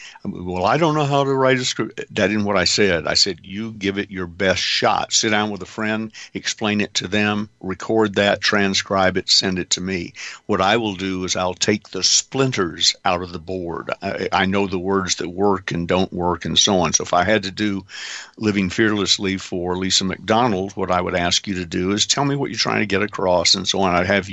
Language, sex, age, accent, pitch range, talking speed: English, male, 50-69, American, 90-105 Hz, 240 wpm